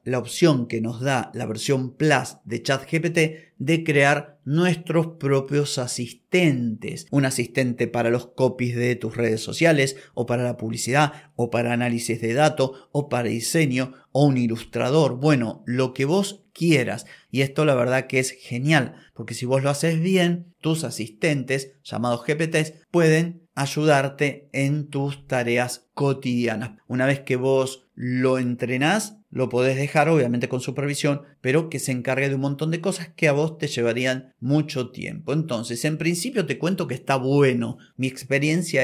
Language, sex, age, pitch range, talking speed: Spanish, male, 30-49, 125-150 Hz, 160 wpm